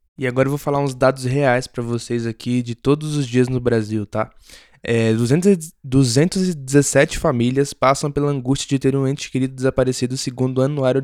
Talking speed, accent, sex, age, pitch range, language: 175 wpm, Brazilian, male, 20-39, 120-140 Hz, Portuguese